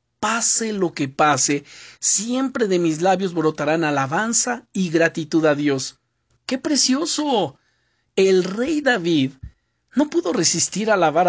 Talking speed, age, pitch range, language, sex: 130 wpm, 50-69, 145-205 Hz, Spanish, male